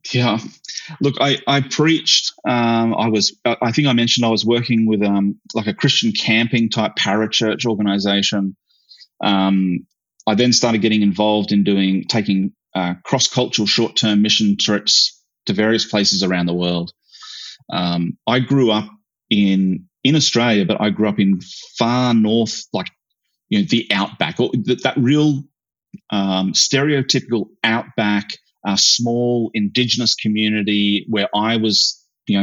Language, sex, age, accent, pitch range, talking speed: English, male, 30-49, Australian, 100-120 Hz, 145 wpm